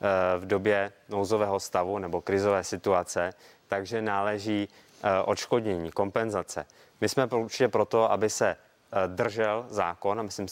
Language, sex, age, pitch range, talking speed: Czech, male, 20-39, 100-115 Hz, 120 wpm